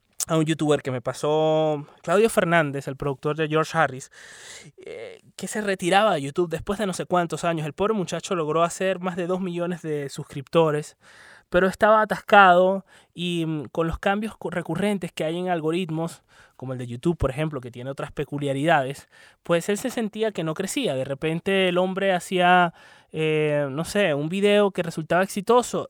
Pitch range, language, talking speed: 150-190 Hz, Spanish, 180 wpm